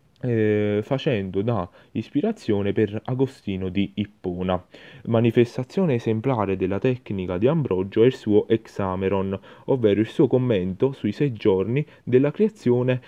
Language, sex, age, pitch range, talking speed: Italian, male, 20-39, 100-120 Hz, 125 wpm